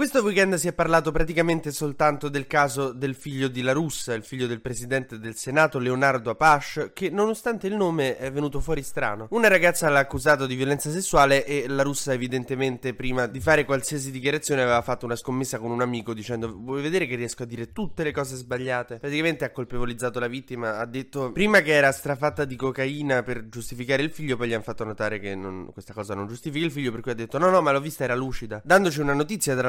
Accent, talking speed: native, 220 wpm